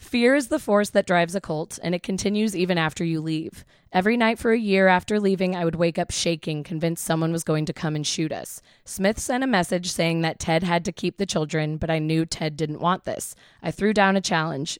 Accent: American